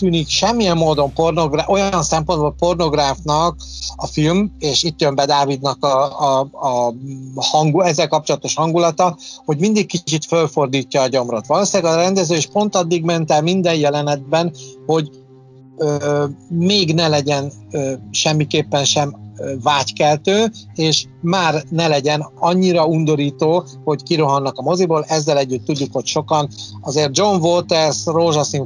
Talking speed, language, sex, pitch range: 135 wpm, Hungarian, male, 135-160 Hz